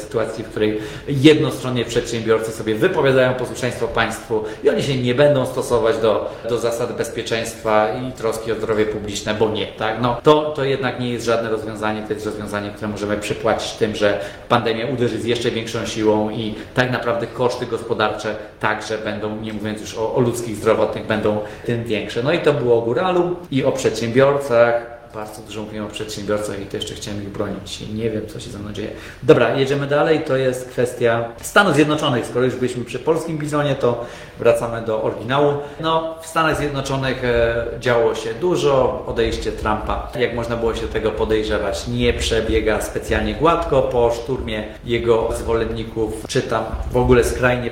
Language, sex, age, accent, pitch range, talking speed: Polish, male, 30-49, native, 110-125 Hz, 175 wpm